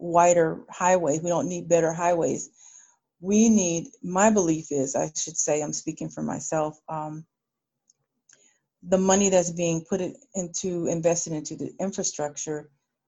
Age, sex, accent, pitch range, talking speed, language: 40-59, female, American, 160-190 Hz, 140 wpm, English